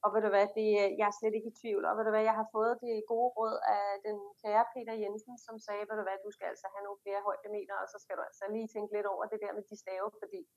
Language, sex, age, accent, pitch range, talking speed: Danish, female, 30-49, native, 200-240 Hz, 295 wpm